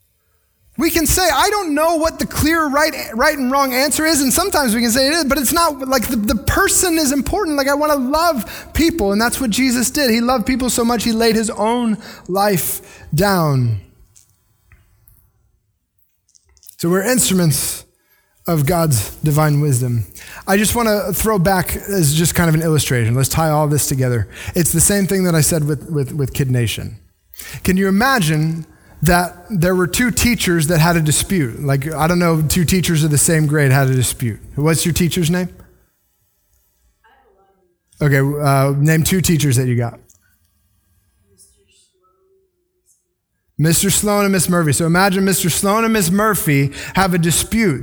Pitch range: 140-220 Hz